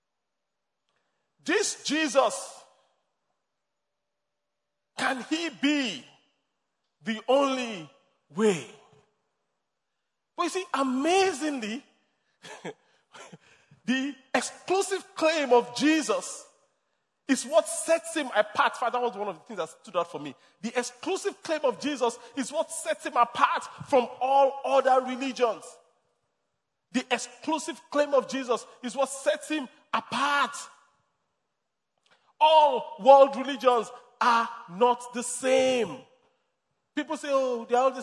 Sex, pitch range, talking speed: male, 215-290 Hz, 110 wpm